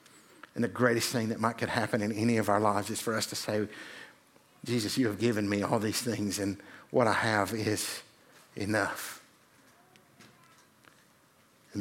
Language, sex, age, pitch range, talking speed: English, male, 50-69, 105-125 Hz, 170 wpm